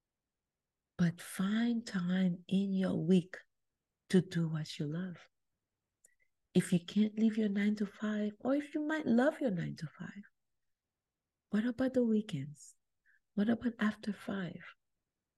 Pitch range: 175-235 Hz